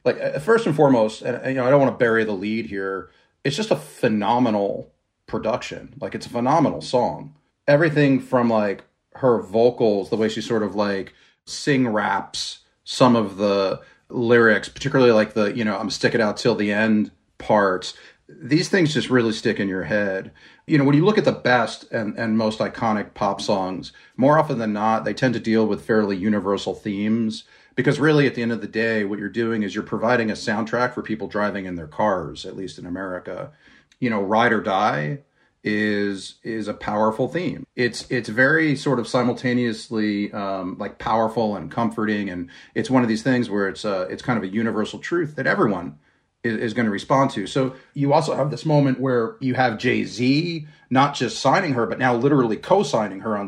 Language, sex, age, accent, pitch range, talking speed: English, male, 30-49, American, 105-130 Hz, 195 wpm